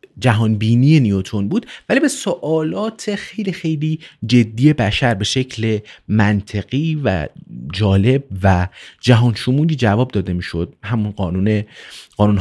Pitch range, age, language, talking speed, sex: 95-140 Hz, 30-49, Persian, 115 wpm, male